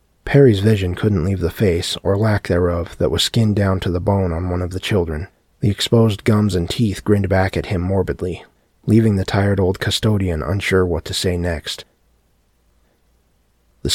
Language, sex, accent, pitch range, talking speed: English, male, American, 90-105 Hz, 180 wpm